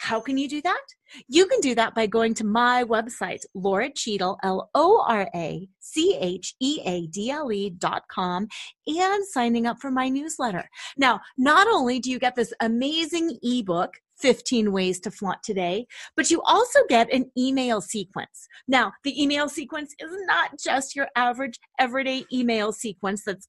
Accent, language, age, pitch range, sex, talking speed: American, English, 30-49, 200-290 Hz, female, 150 wpm